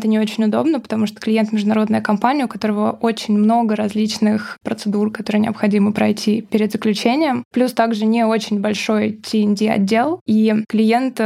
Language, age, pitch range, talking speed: Russian, 20-39, 215-230 Hz, 155 wpm